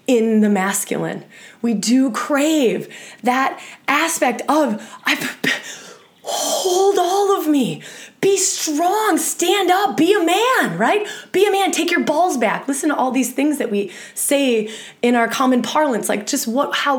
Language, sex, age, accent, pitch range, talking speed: English, female, 20-39, American, 220-295 Hz, 160 wpm